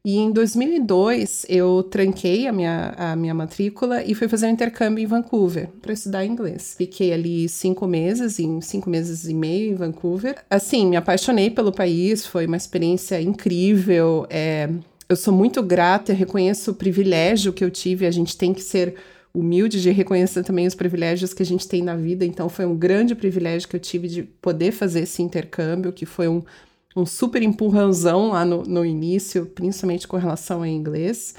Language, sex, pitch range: Portuguese, female, 175-205 Hz